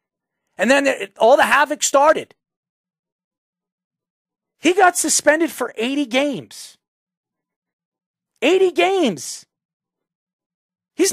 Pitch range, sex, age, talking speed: 195-305 Hz, male, 40-59, 80 wpm